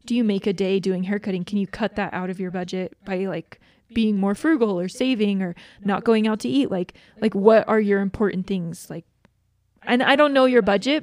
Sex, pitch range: female, 195-245 Hz